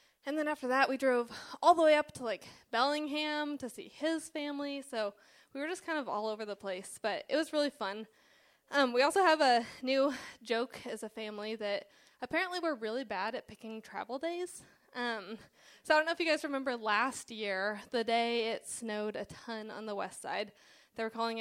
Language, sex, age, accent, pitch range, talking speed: English, female, 20-39, American, 215-285 Hz, 210 wpm